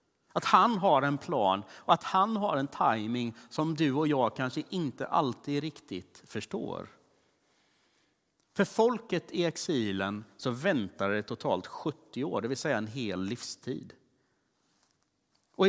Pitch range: 110-175 Hz